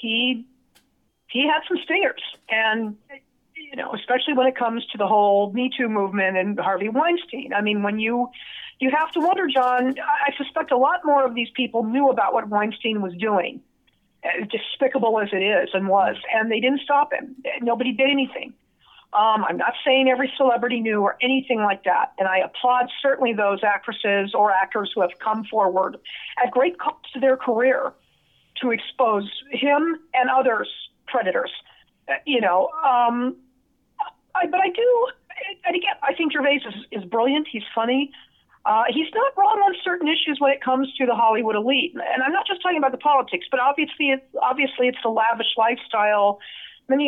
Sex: female